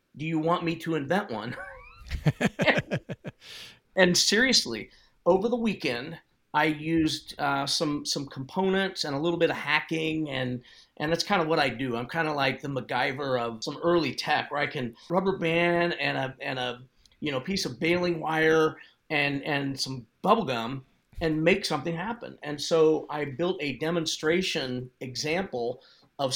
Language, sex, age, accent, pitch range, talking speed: English, male, 40-59, American, 140-165 Hz, 170 wpm